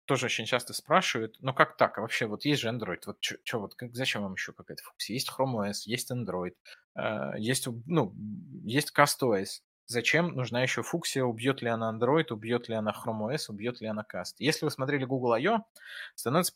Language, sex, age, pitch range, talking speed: Russian, male, 20-39, 110-135 Hz, 200 wpm